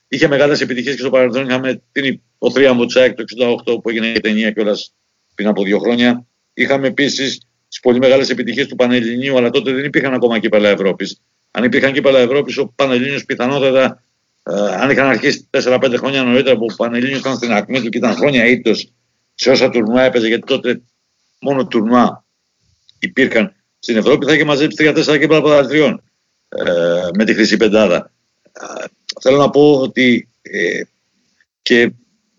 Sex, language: male, Greek